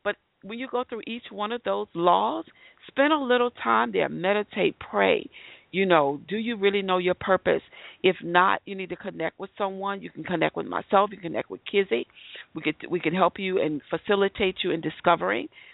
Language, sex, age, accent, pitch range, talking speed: English, female, 40-59, American, 165-220 Hz, 195 wpm